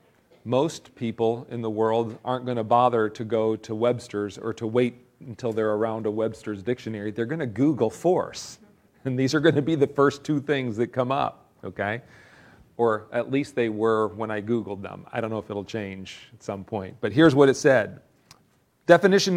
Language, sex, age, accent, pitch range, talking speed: English, male, 40-59, American, 125-200 Hz, 200 wpm